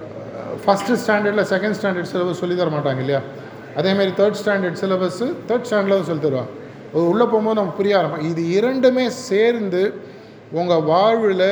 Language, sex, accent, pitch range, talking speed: Tamil, male, native, 160-200 Hz, 140 wpm